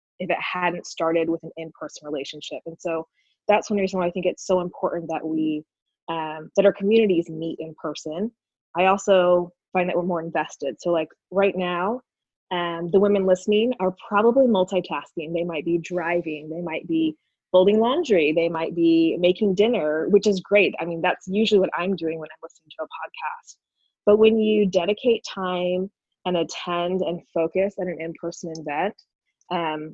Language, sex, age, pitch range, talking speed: English, female, 20-39, 165-195 Hz, 180 wpm